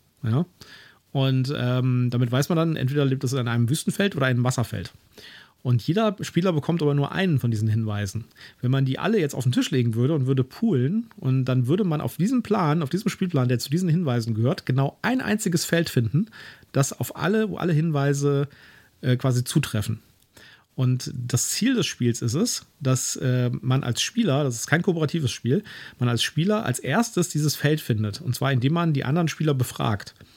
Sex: male